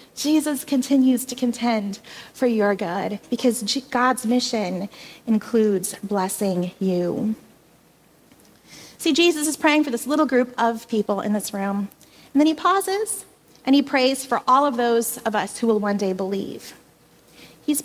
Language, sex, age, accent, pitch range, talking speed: English, female, 30-49, American, 210-300 Hz, 150 wpm